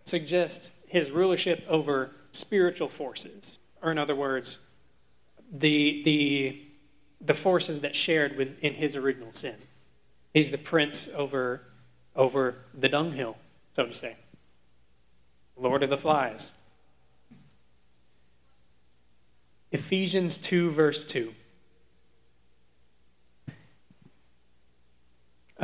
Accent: American